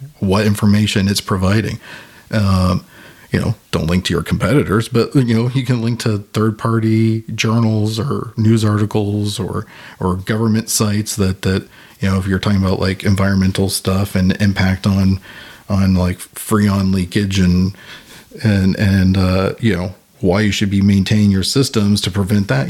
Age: 40-59